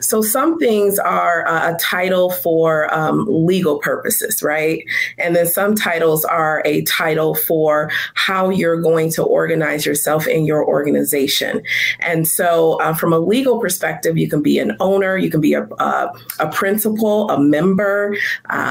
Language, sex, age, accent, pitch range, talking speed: English, female, 30-49, American, 155-190 Hz, 160 wpm